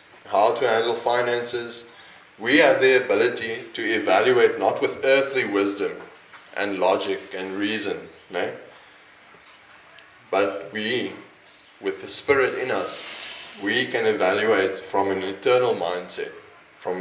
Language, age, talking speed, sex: English, 20-39, 120 wpm, male